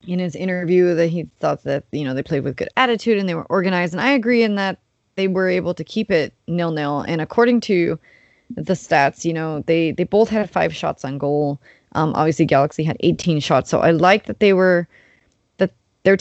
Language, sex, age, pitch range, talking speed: English, female, 20-39, 160-190 Hz, 220 wpm